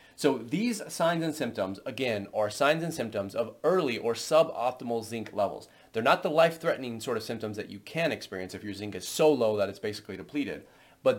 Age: 30-49